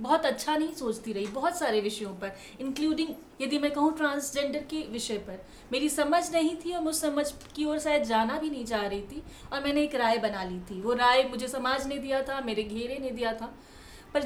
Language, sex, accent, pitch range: Hindi, female, native, 235-310 Hz